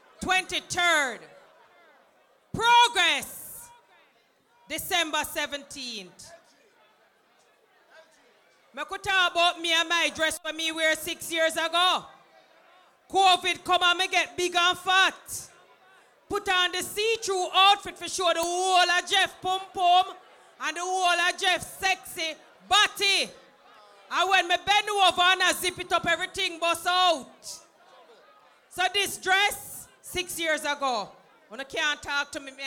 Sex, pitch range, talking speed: female, 325-380 Hz, 130 wpm